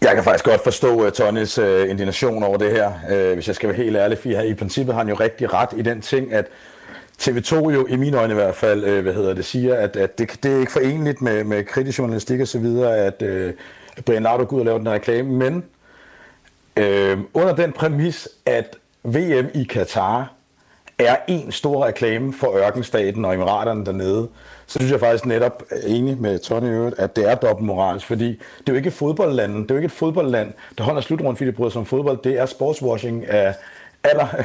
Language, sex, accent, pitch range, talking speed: Danish, male, native, 105-135 Hz, 215 wpm